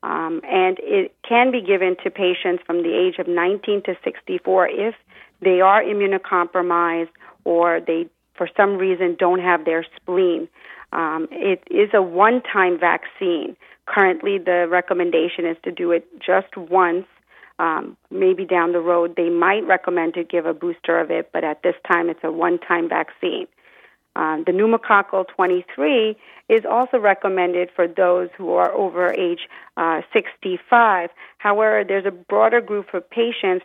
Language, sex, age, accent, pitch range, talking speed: English, female, 40-59, American, 175-200 Hz, 155 wpm